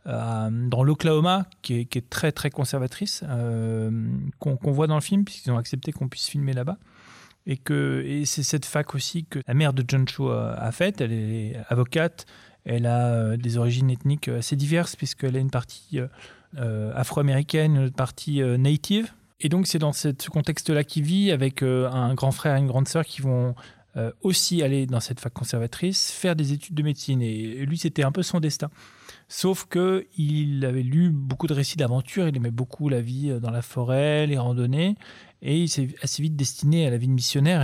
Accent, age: French, 30-49